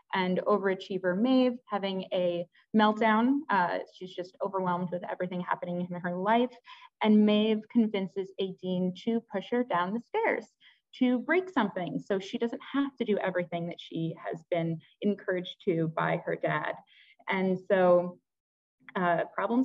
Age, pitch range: 20-39, 175-225 Hz